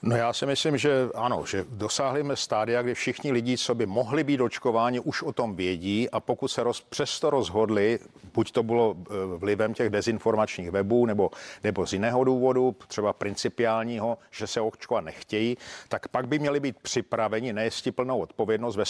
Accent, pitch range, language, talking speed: native, 110-130 Hz, Czech, 180 wpm